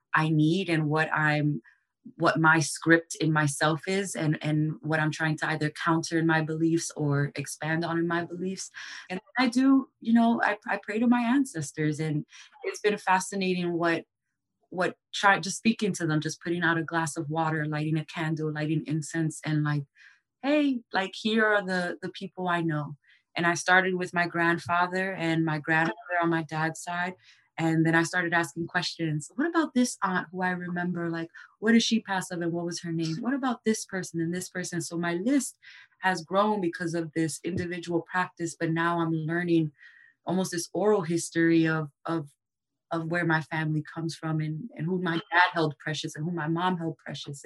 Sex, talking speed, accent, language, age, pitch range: female, 195 wpm, American, English, 20-39, 160-185 Hz